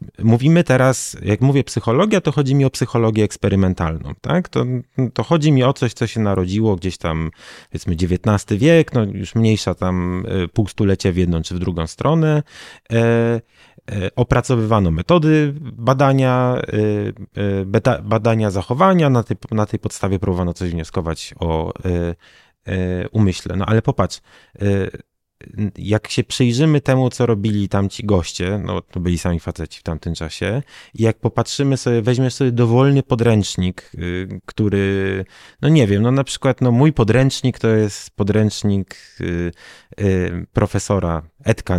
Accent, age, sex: native, 30-49, male